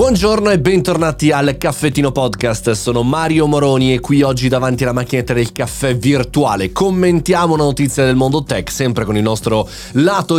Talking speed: 170 wpm